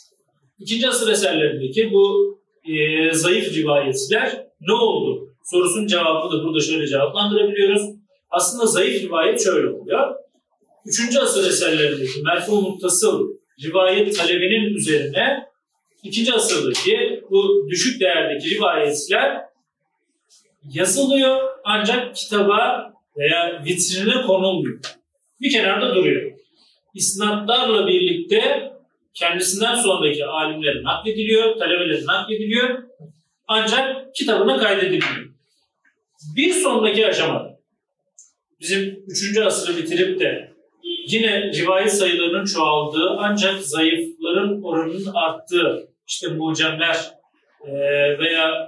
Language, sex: Turkish, male